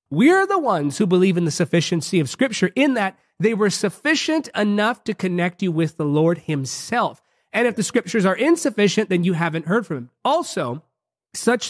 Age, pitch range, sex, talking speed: 30-49, 170-230 Hz, male, 190 wpm